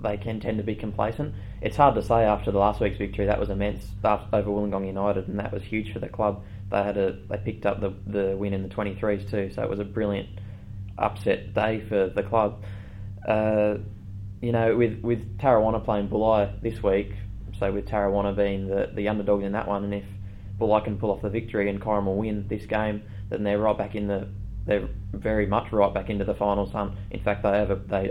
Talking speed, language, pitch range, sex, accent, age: 230 wpm, English, 100-110 Hz, male, Australian, 20-39